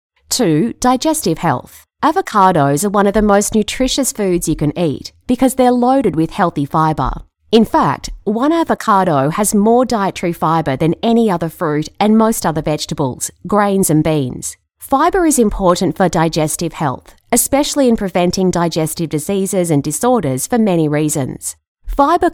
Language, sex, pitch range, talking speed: English, female, 155-230 Hz, 150 wpm